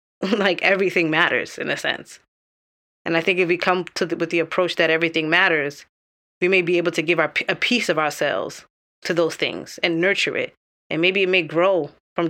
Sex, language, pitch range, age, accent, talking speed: female, English, 160-180 Hz, 20-39, American, 215 wpm